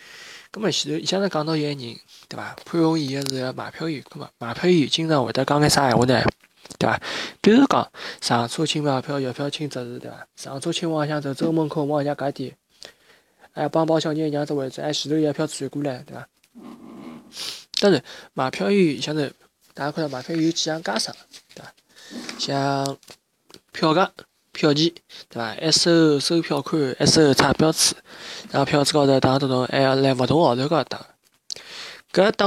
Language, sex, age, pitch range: Chinese, male, 20-39, 140-160 Hz